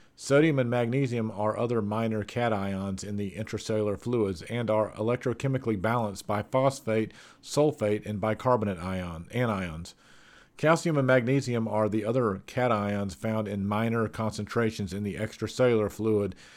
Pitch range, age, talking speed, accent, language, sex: 105-125 Hz, 50-69, 130 wpm, American, English, male